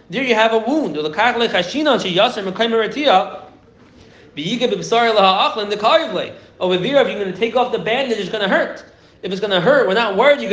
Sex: male